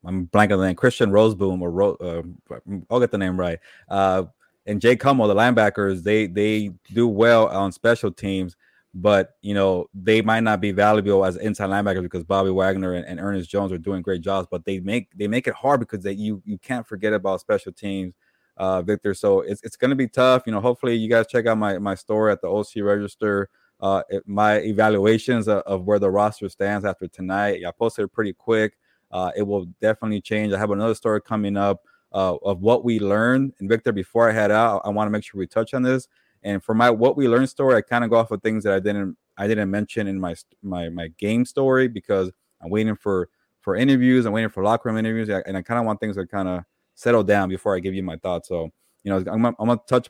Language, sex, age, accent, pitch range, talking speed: English, male, 20-39, American, 95-110 Hz, 235 wpm